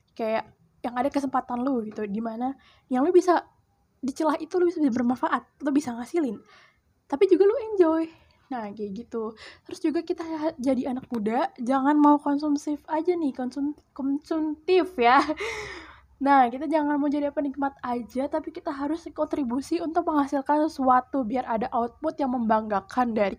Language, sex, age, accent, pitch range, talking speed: Indonesian, female, 10-29, native, 245-315 Hz, 155 wpm